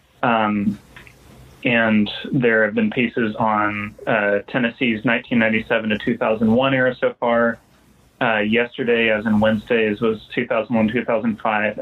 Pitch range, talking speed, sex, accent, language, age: 110-130 Hz, 110 wpm, male, American, English, 20-39